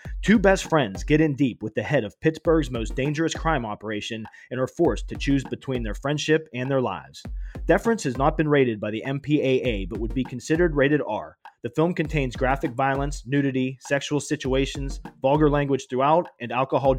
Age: 30-49